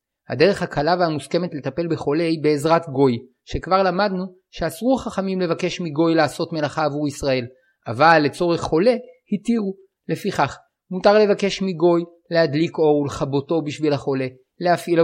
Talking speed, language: 130 wpm, Hebrew